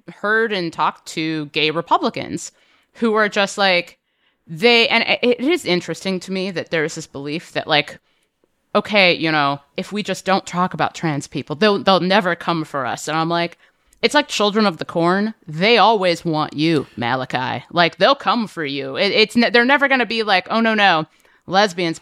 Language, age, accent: English, 30-49, American